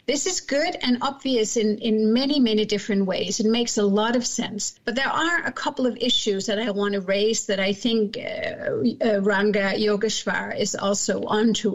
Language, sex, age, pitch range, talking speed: English, female, 50-69, 210-245 Hz, 195 wpm